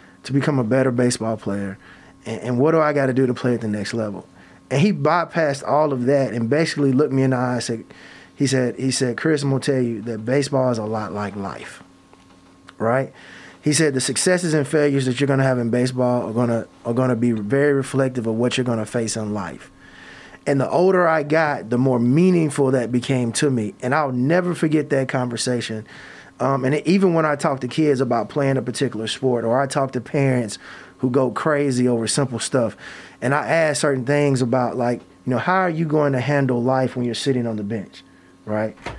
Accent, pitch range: American, 120-150 Hz